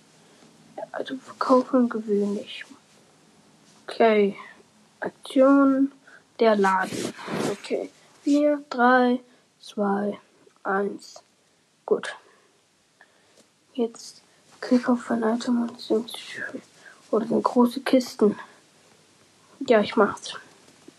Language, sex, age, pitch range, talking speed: German, female, 20-39, 205-265 Hz, 80 wpm